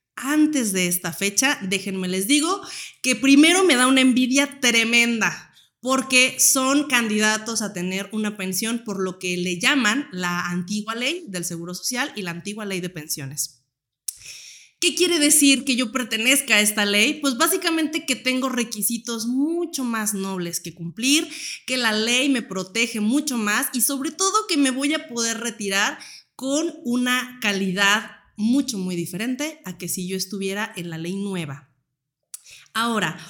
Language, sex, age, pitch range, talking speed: Spanish, female, 30-49, 195-275 Hz, 160 wpm